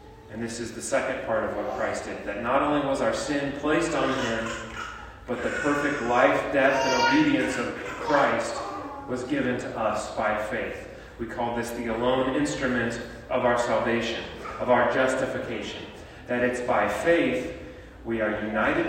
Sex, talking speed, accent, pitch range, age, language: male, 170 wpm, American, 115-140 Hz, 30-49, English